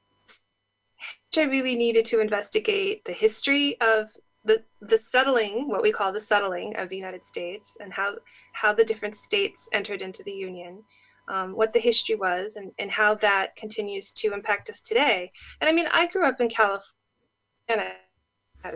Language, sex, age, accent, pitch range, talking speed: English, female, 20-39, American, 195-265 Hz, 175 wpm